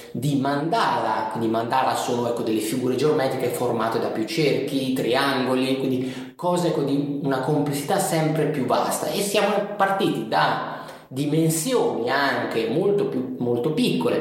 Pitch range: 125-200 Hz